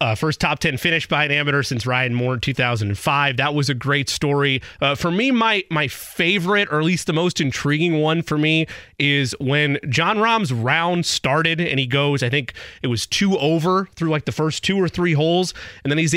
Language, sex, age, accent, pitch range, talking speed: English, male, 30-49, American, 130-160 Hz, 220 wpm